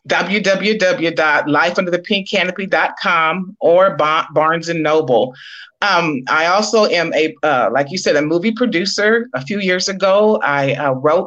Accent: American